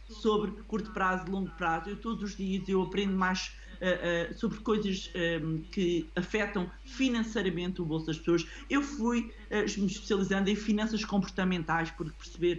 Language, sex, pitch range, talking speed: Portuguese, male, 165-215 Hz, 160 wpm